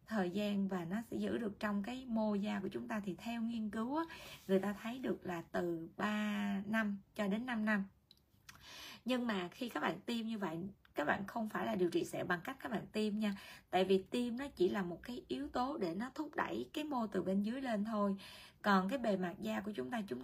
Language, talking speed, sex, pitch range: Vietnamese, 245 wpm, female, 185-230 Hz